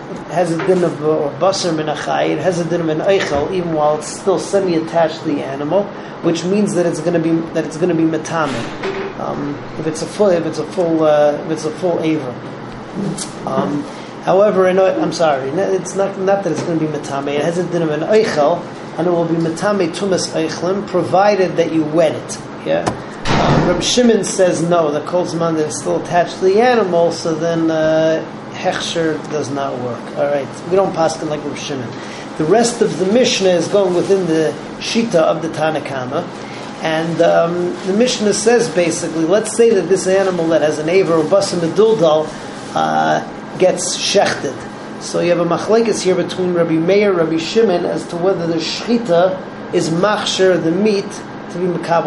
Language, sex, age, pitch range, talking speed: English, male, 30-49, 160-190 Hz, 190 wpm